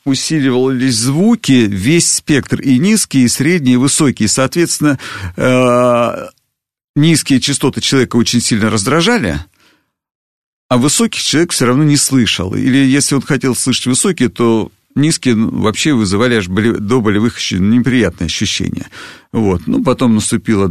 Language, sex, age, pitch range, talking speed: Russian, male, 50-69, 105-135 Hz, 135 wpm